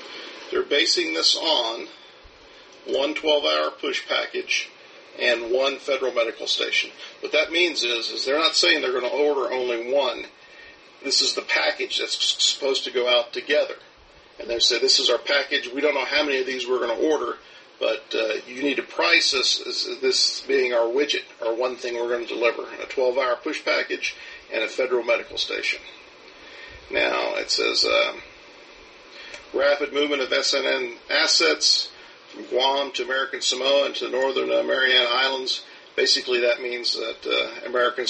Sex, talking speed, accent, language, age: male, 170 wpm, American, English, 50-69